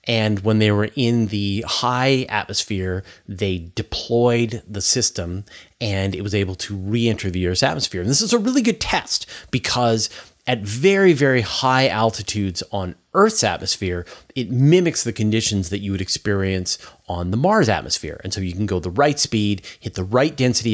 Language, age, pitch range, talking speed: English, 30-49, 100-125 Hz, 175 wpm